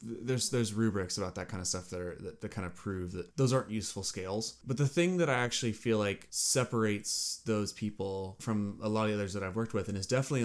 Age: 20-39